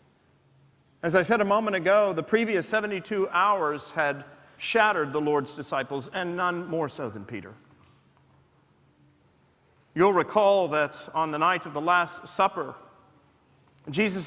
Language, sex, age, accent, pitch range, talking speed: English, male, 40-59, American, 150-205 Hz, 135 wpm